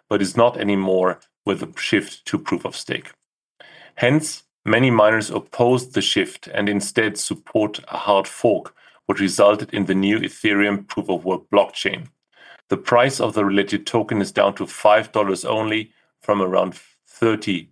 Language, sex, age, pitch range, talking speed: English, male, 40-59, 100-120 Hz, 145 wpm